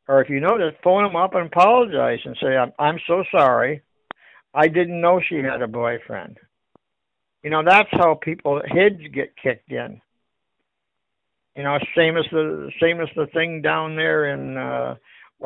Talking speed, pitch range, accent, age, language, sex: 170 wpm, 145-185 Hz, American, 60-79, English, male